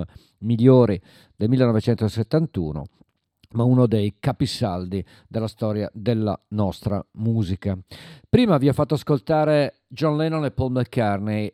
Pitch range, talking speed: 105-140 Hz, 115 wpm